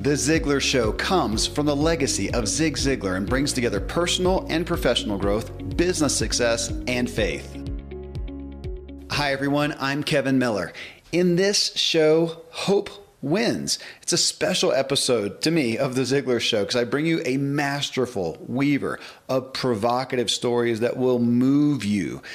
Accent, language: American, English